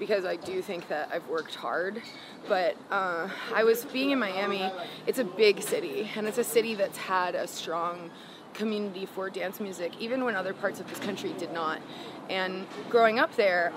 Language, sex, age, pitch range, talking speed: English, female, 20-39, 185-220 Hz, 190 wpm